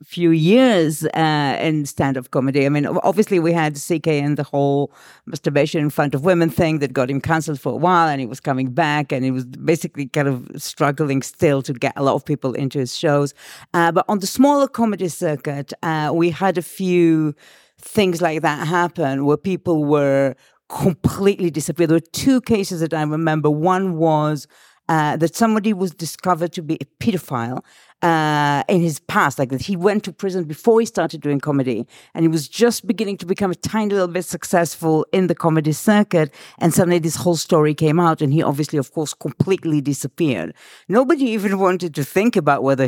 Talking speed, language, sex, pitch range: 195 wpm, English, female, 145-180 Hz